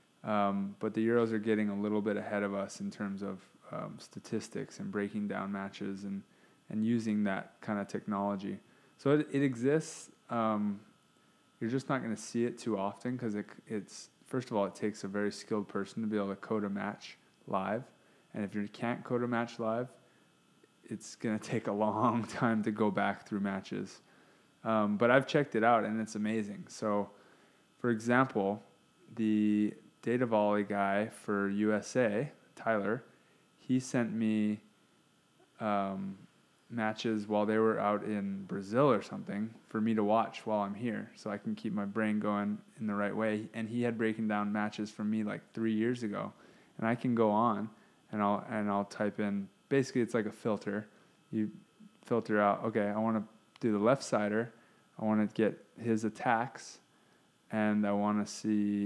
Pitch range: 100-115 Hz